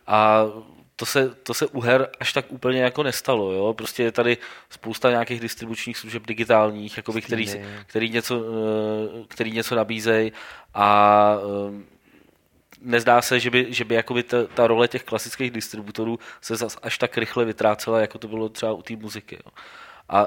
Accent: native